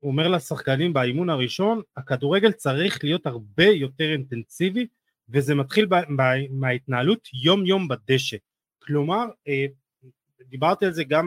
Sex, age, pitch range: male, 30-49, 130-165 Hz